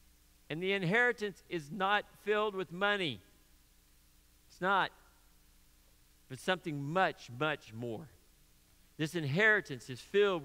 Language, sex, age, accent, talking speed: English, male, 50-69, American, 110 wpm